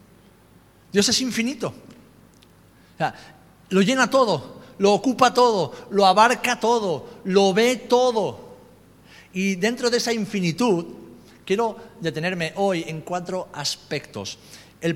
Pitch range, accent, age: 130-210 Hz, Spanish, 50-69